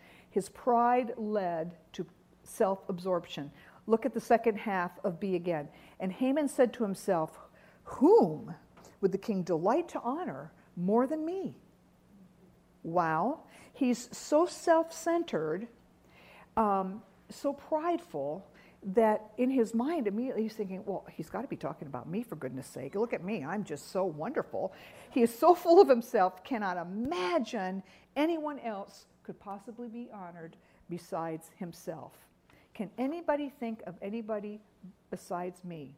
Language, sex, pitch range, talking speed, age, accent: English, female, 185-245 Hz, 135 wpm, 50-69, American